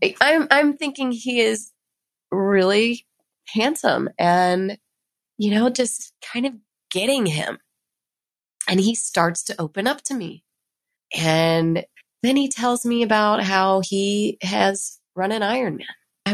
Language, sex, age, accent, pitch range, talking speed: English, female, 20-39, American, 195-260 Hz, 130 wpm